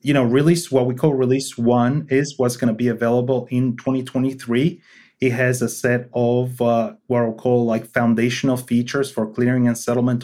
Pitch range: 120-140 Hz